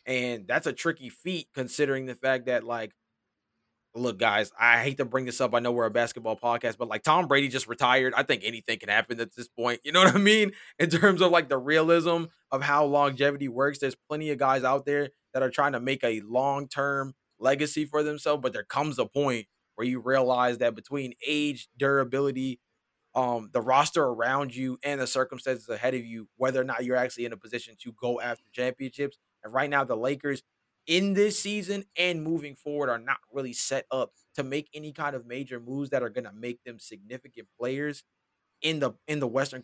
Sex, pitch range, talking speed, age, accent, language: male, 125-160 Hz, 210 wpm, 20-39, American, English